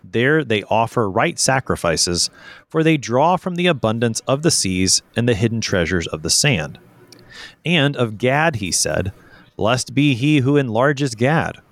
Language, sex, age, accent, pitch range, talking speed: English, male, 30-49, American, 100-140 Hz, 165 wpm